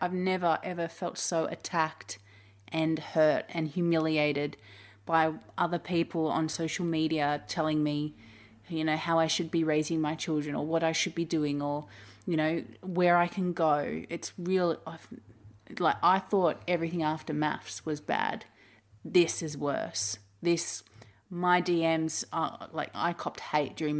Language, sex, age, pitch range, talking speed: English, female, 30-49, 150-175 Hz, 160 wpm